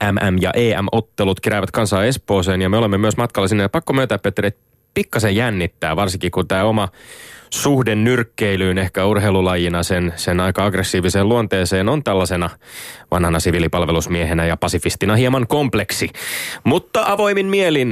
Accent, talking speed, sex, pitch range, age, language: native, 140 wpm, male, 90-115 Hz, 30-49, Finnish